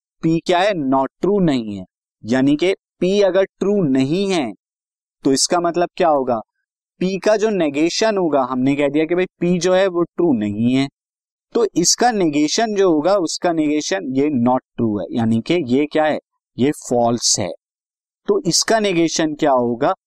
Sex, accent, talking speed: male, native, 180 wpm